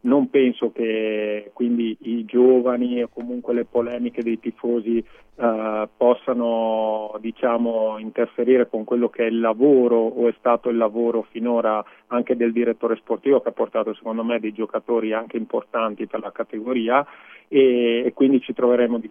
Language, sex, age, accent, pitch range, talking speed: Italian, male, 30-49, native, 115-125 Hz, 155 wpm